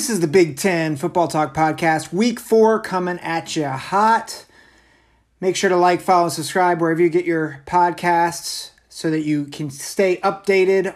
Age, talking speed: 30-49, 170 wpm